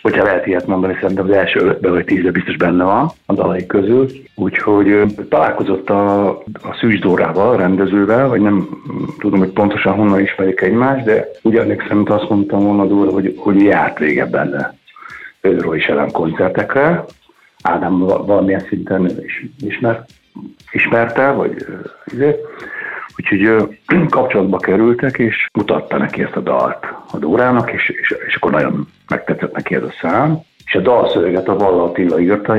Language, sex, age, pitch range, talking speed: Hungarian, male, 60-79, 95-130 Hz, 155 wpm